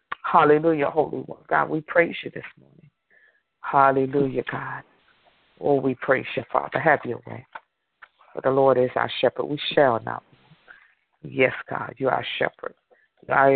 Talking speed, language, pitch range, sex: 150 wpm, English, 130-155 Hz, female